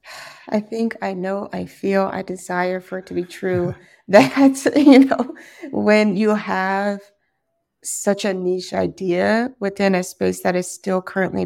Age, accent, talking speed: 30-49, American, 155 wpm